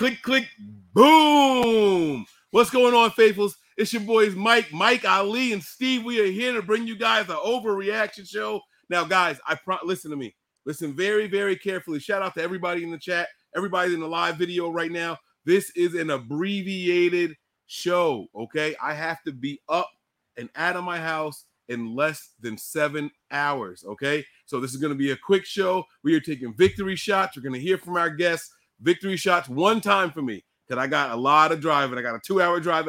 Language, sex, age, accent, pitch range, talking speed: English, male, 30-49, American, 165-220 Hz, 205 wpm